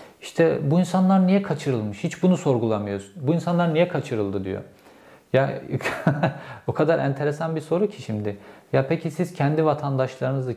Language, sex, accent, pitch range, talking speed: Turkish, male, native, 125-155 Hz, 150 wpm